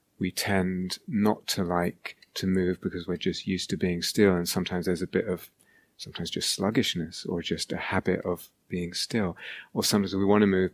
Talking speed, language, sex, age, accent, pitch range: 200 wpm, English, male, 30-49, British, 95-130 Hz